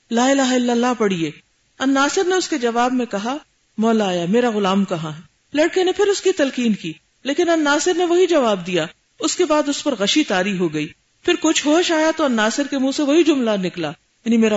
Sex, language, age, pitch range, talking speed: female, Urdu, 40-59, 175-255 Hz, 220 wpm